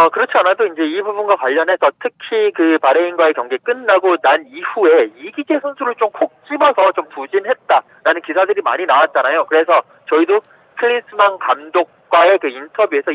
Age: 40-59